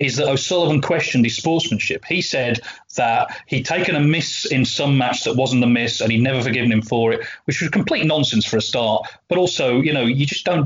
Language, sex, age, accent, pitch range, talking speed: English, male, 40-59, British, 120-160 Hz, 230 wpm